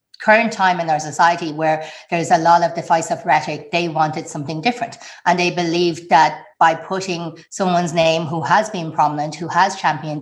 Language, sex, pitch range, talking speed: English, female, 160-195 Hz, 190 wpm